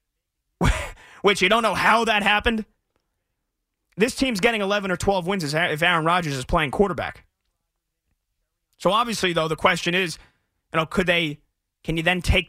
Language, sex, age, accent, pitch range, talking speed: English, male, 30-49, American, 140-185 Hz, 165 wpm